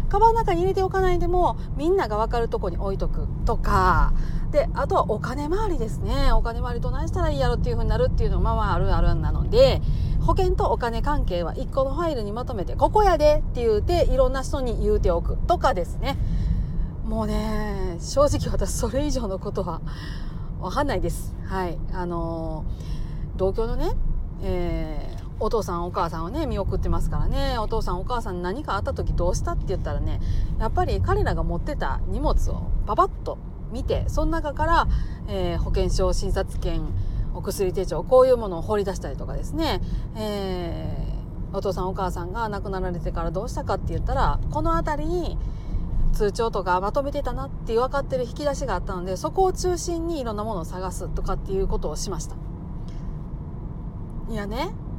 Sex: female